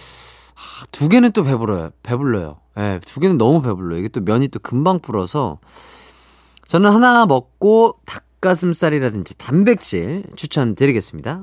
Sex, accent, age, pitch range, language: male, native, 30-49, 105-165 Hz, Korean